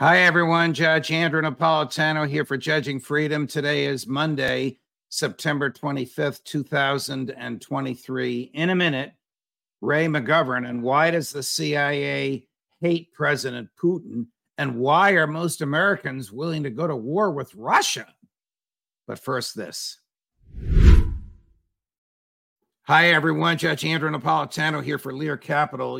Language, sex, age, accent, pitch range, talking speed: English, male, 50-69, American, 125-155 Hz, 120 wpm